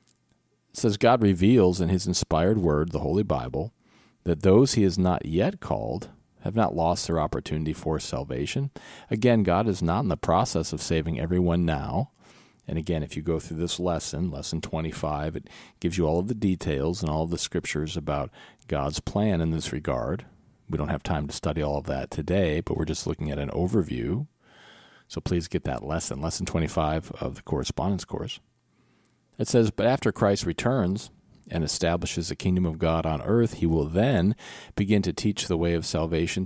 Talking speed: 190 wpm